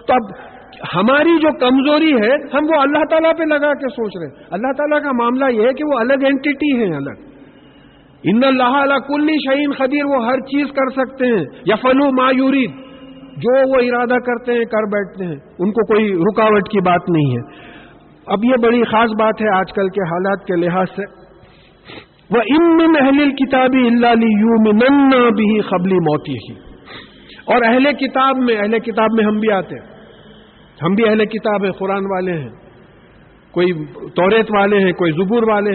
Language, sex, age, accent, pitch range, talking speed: English, male, 50-69, Indian, 195-270 Hz, 150 wpm